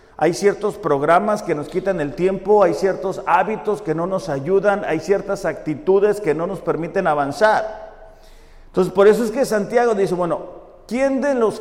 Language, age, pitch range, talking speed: Spanish, 50-69, 175-230 Hz, 175 wpm